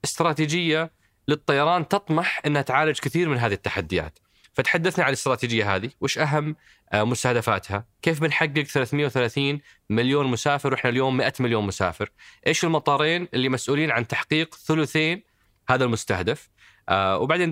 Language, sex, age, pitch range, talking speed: Arabic, male, 20-39, 115-145 Hz, 125 wpm